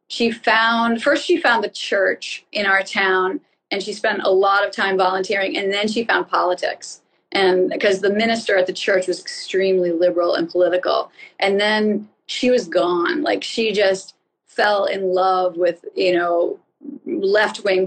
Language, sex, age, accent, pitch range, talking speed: English, female, 30-49, American, 185-220 Hz, 170 wpm